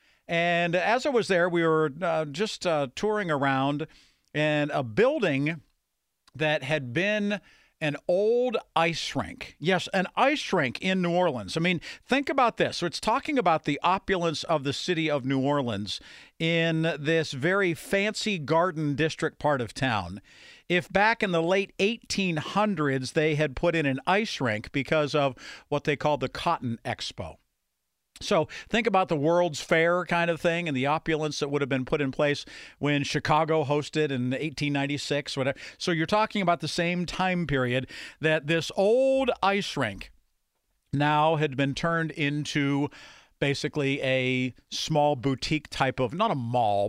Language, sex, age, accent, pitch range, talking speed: English, male, 50-69, American, 140-180 Hz, 165 wpm